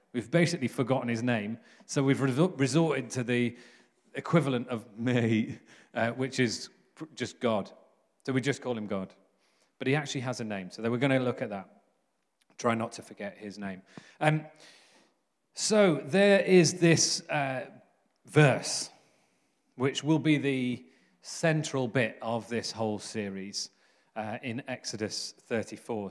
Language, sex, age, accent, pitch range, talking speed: English, male, 40-59, British, 115-140 Hz, 150 wpm